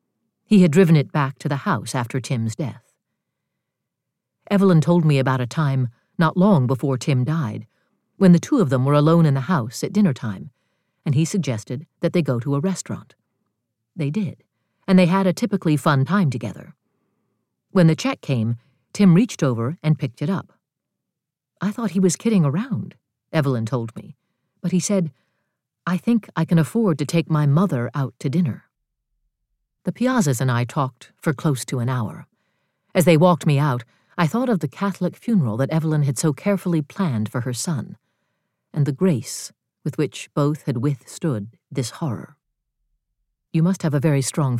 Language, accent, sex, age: English, American, female, 50-69